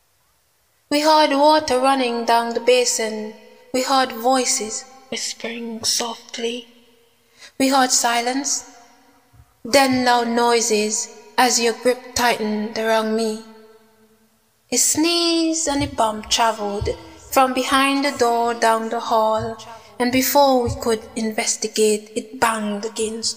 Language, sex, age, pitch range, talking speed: English, female, 20-39, 225-255 Hz, 115 wpm